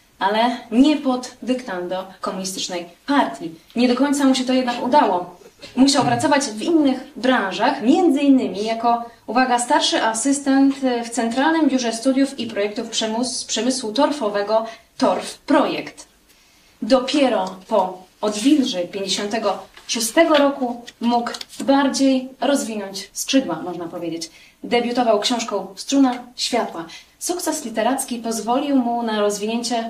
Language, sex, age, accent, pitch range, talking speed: Polish, female, 20-39, native, 205-265 Hz, 110 wpm